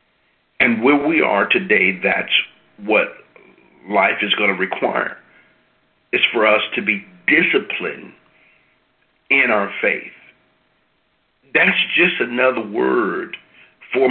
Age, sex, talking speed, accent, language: 50-69, male, 110 wpm, American, English